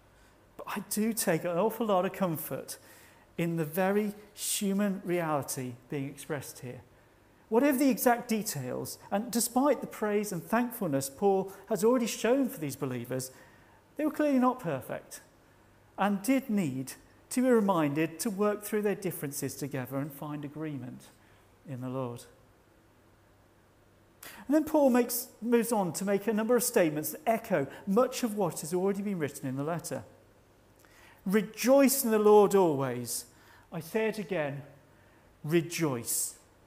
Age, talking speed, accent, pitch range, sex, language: 40-59, 145 wpm, British, 130-215 Hz, male, English